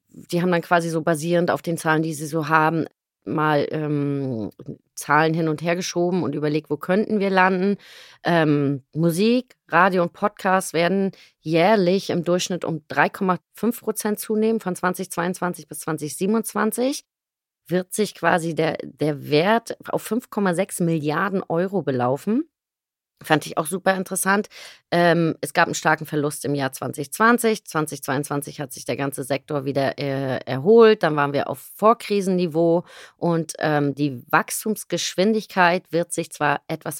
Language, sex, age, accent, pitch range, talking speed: German, female, 30-49, German, 150-185 Hz, 140 wpm